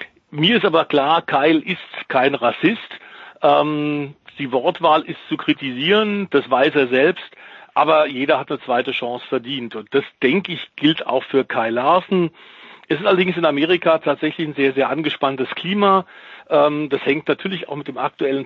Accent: German